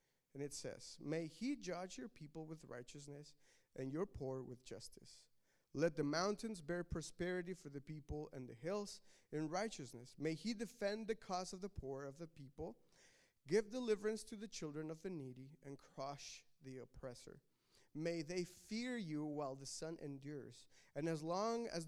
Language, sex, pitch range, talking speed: English, male, 140-180 Hz, 175 wpm